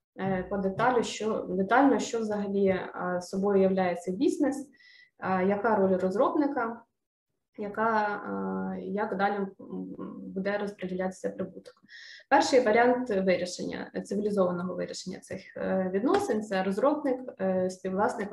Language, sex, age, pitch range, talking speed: Ukrainian, female, 20-39, 190-230 Hz, 100 wpm